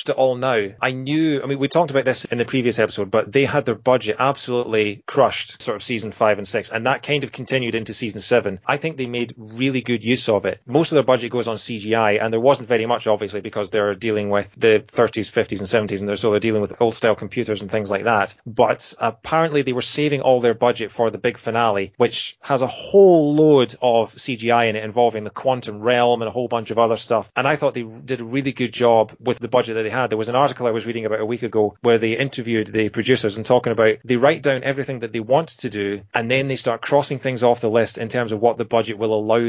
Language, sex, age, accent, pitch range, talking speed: English, male, 30-49, British, 115-145 Hz, 260 wpm